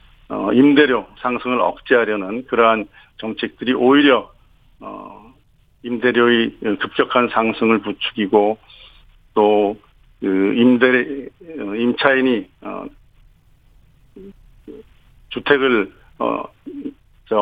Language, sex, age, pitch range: Korean, male, 50-69, 110-130 Hz